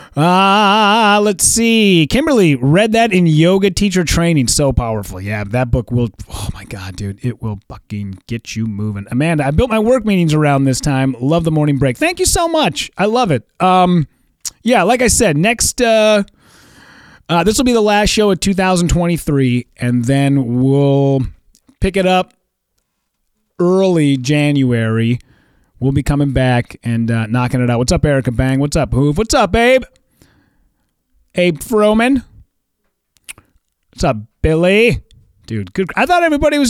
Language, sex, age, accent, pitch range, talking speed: English, male, 30-49, American, 125-195 Hz, 165 wpm